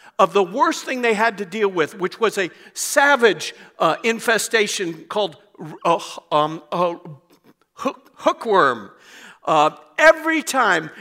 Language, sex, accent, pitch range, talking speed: English, male, American, 180-245 Hz, 125 wpm